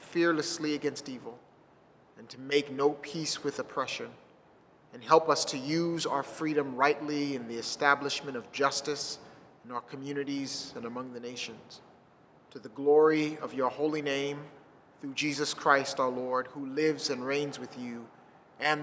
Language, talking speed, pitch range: English, 155 wpm, 130-150 Hz